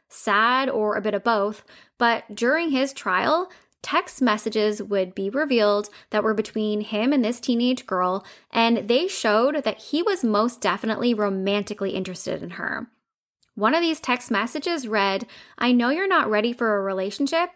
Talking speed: 165 wpm